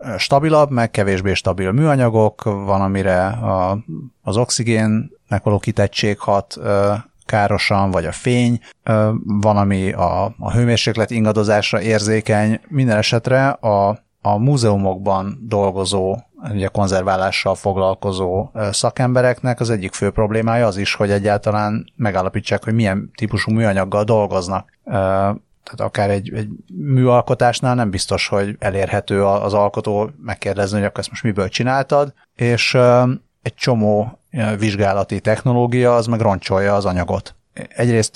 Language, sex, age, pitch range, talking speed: Hungarian, male, 30-49, 100-115 Hz, 115 wpm